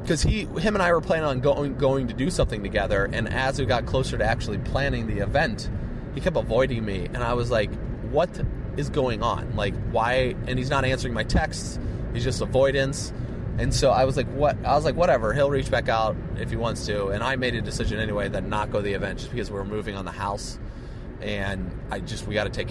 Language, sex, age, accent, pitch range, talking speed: English, male, 30-49, American, 105-135 Hz, 245 wpm